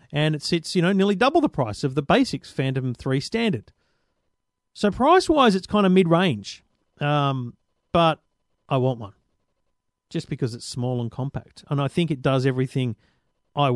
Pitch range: 125-170 Hz